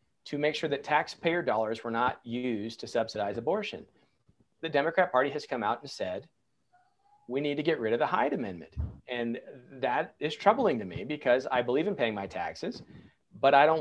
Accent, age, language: American, 40-59, English